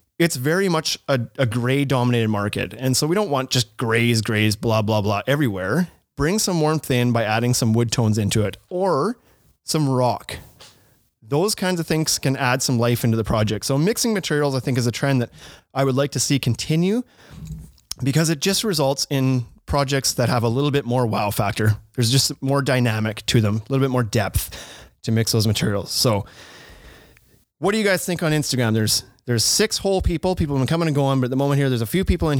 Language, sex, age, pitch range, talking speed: English, male, 30-49, 115-145 Hz, 220 wpm